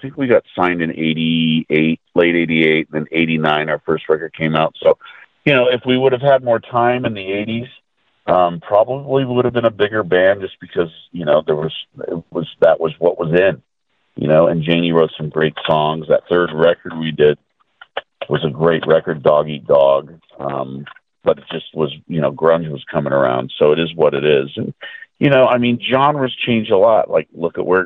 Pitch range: 75-95 Hz